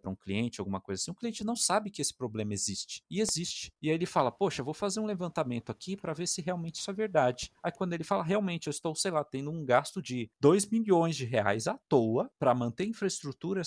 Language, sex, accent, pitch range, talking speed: Portuguese, male, Brazilian, 110-170 Hz, 245 wpm